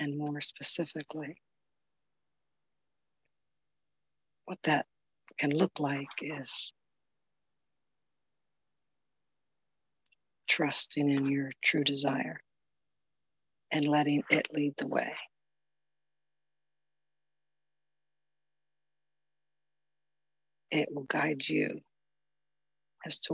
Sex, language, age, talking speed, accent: female, English, 60-79, 65 wpm, American